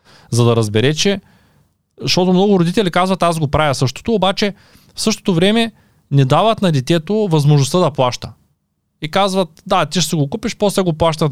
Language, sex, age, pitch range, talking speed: Bulgarian, male, 20-39, 125-180 Hz, 175 wpm